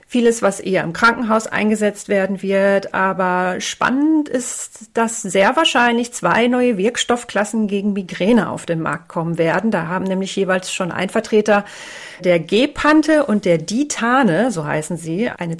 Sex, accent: female, German